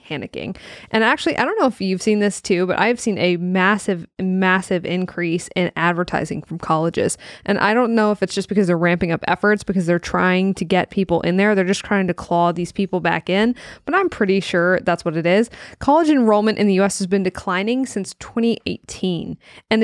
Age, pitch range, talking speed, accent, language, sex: 20-39, 185-220 Hz, 210 wpm, American, English, female